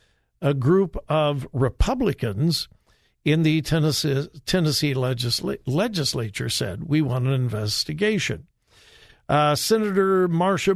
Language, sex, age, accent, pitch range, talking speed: English, male, 60-79, American, 135-195 Hz, 100 wpm